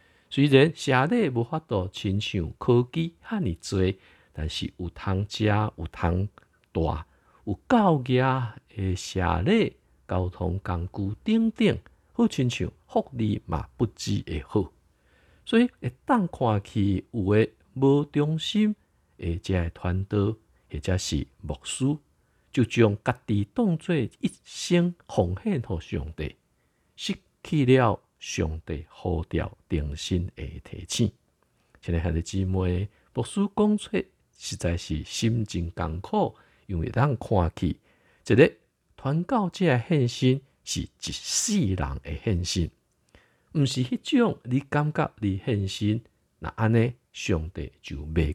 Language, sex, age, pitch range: Chinese, male, 50-69, 85-135 Hz